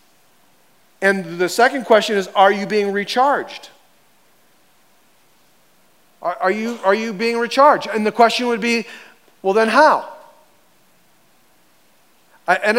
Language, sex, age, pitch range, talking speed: English, male, 40-59, 180-230 Hz, 120 wpm